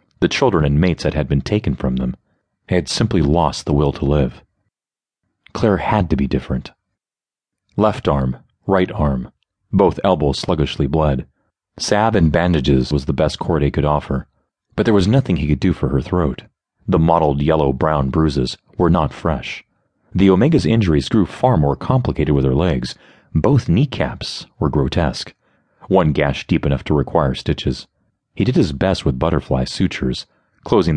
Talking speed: 165 wpm